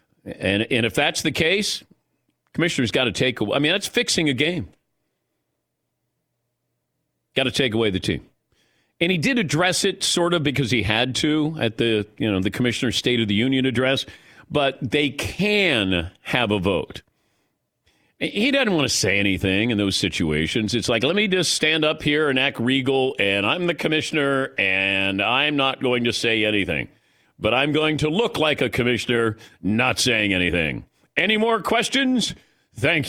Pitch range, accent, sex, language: 110-155 Hz, American, male, English